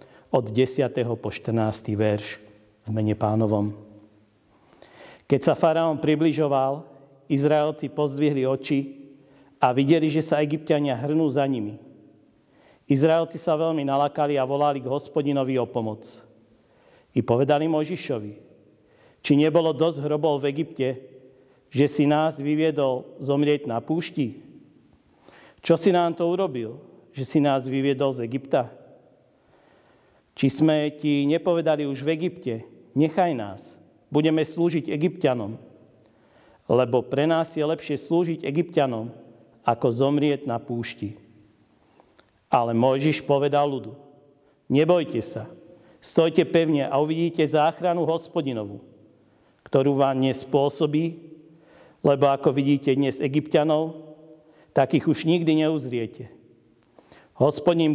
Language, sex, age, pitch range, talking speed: Slovak, male, 50-69, 130-155 Hz, 115 wpm